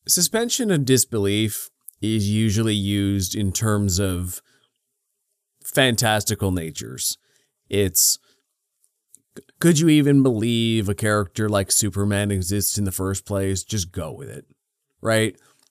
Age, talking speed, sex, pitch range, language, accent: 30-49, 115 wpm, male, 100-120 Hz, English, American